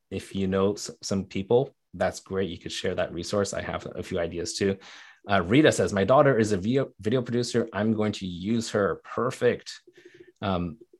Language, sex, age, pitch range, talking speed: English, male, 30-49, 90-110 Hz, 190 wpm